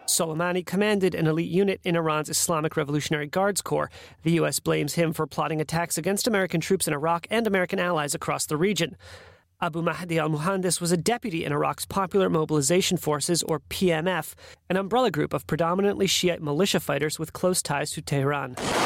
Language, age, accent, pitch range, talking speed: English, 30-49, American, 150-185 Hz, 175 wpm